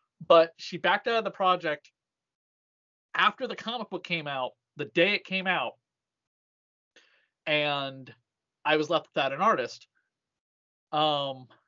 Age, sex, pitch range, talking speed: 30-49, male, 135-175 Hz, 135 wpm